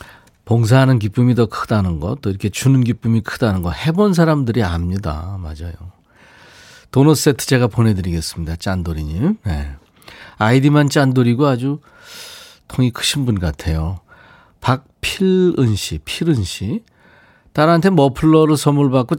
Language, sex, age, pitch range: Korean, male, 40-59, 95-130 Hz